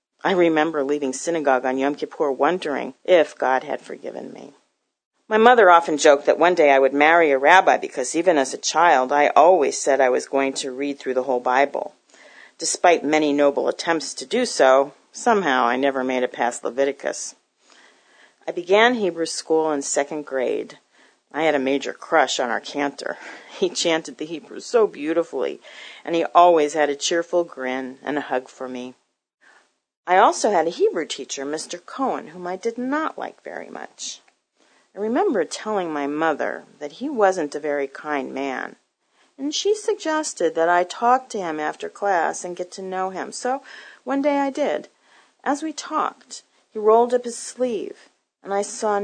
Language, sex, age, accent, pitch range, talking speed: English, female, 40-59, American, 145-230 Hz, 180 wpm